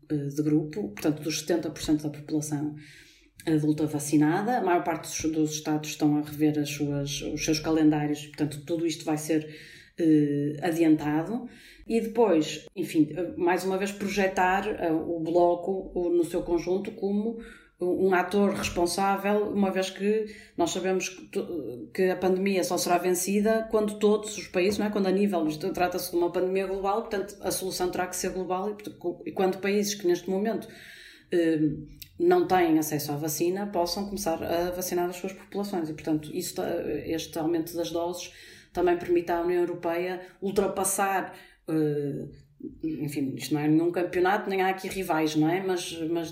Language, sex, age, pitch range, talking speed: Portuguese, female, 30-49, 160-195 Hz, 155 wpm